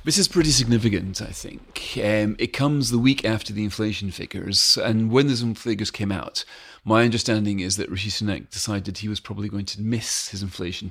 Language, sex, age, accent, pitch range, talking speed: English, male, 40-59, British, 95-115 Hz, 200 wpm